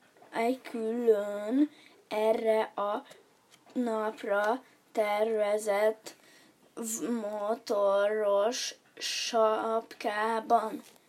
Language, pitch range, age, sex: Hungarian, 210-245 Hz, 20-39, female